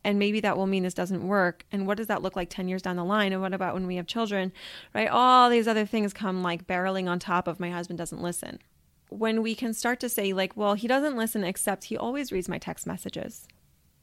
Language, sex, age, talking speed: English, female, 20-39, 250 wpm